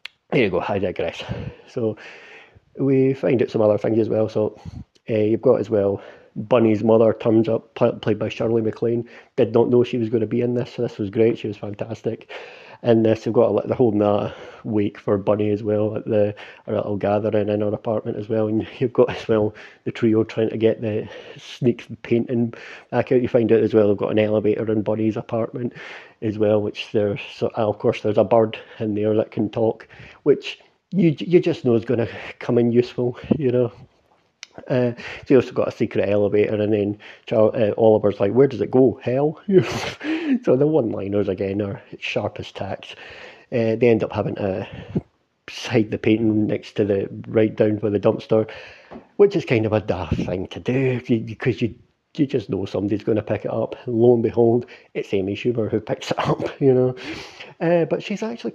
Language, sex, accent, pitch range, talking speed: English, male, British, 105-125 Hz, 210 wpm